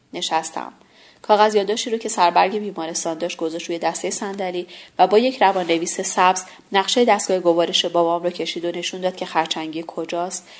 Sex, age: female, 30-49